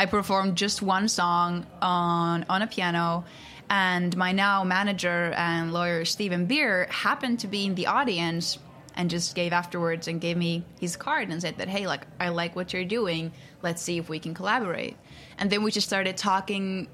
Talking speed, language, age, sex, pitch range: 190 wpm, English, 20-39, female, 170-190 Hz